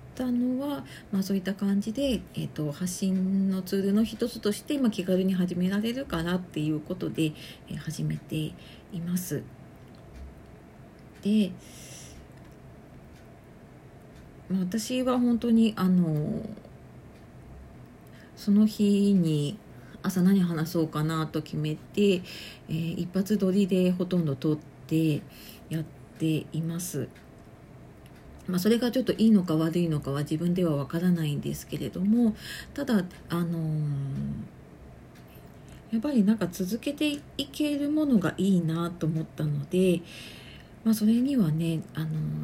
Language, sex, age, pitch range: Japanese, female, 40-59, 155-205 Hz